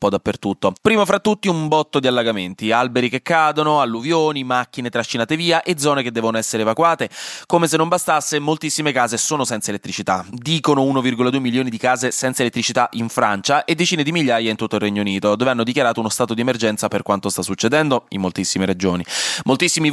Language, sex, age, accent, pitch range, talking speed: Italian, male, 20-39, native, 110-140 Hz, 195 wpm